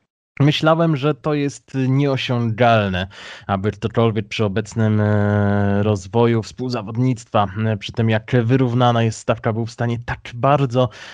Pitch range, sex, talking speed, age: 100-120 Hz, male, 120 wpm, 20-39